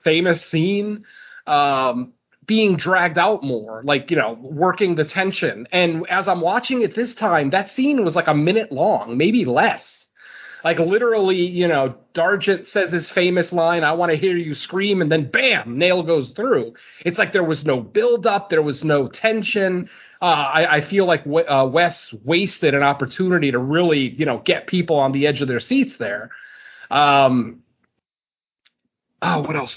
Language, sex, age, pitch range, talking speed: English, male, 30-49, 150-195 Hz, 180 wpm